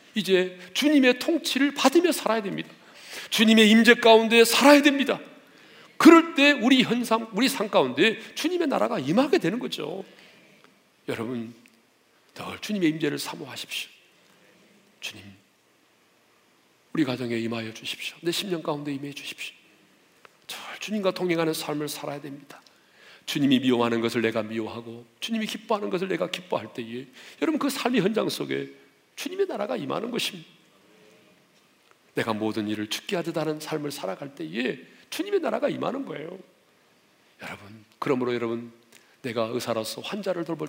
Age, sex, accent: 40-59, male, native